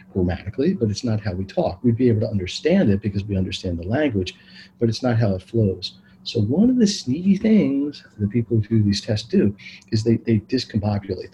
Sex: male